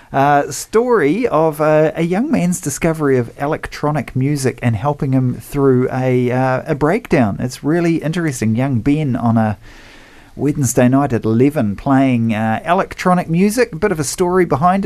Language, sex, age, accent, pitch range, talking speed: English, male, 40-59, Australian, 115-150 Hz, 160 wpm